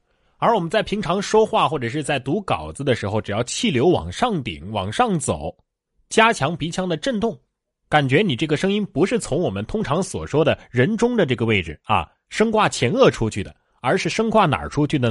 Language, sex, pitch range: Chinese, male, 115-185 Hz